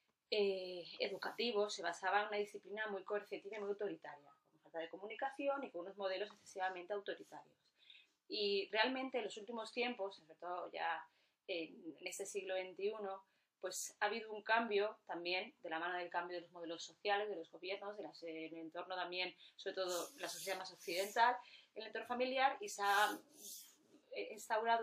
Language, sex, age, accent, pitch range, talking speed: Spanish, female, 20-39, Spanish, 185-225 Hz, 170 wpm